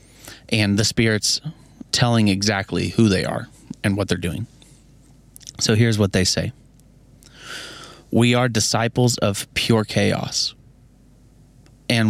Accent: American